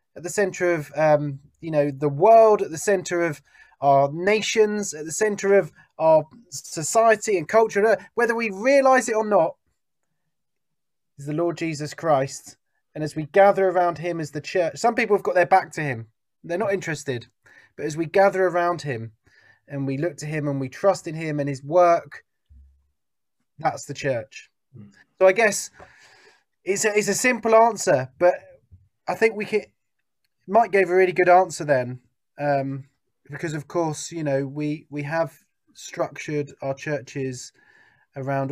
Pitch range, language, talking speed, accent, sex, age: 140-195 Hz, English, 170 wpm, British, male, 20-39